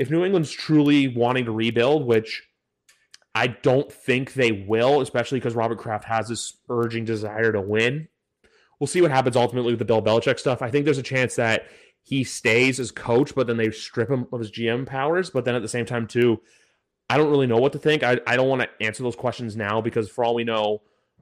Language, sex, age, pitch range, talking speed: English, male, 30-49, 115-140 Hz, 225 wpm